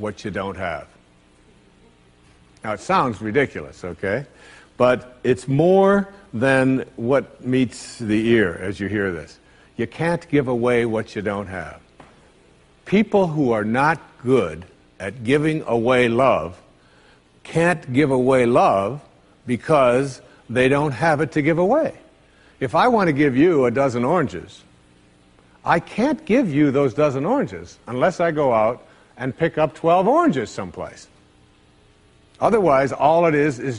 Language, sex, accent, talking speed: English, male, American, 145 wpm